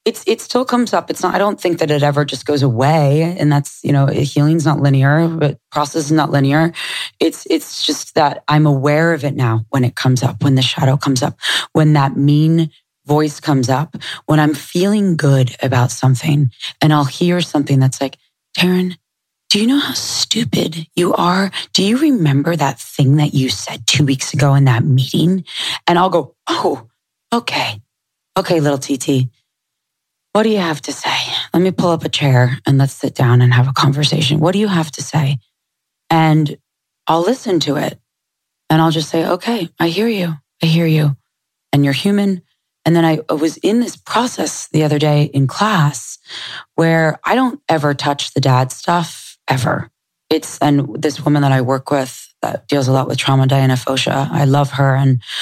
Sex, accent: female, American